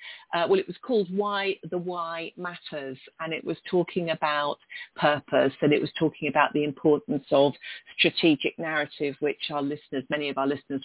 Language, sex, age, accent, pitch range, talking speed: English, female, 40-59, British, 145-205 Hz, 175 wpm